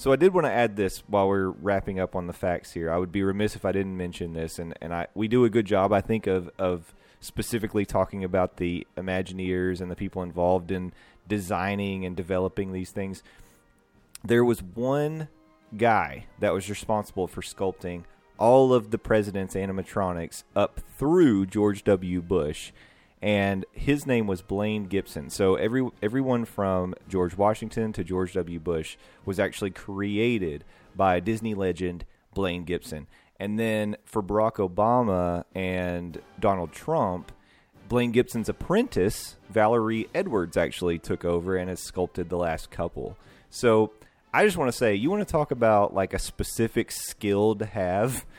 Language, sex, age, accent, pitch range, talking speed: English, male, 30-49, American, 90-110 Hz, 165 wpm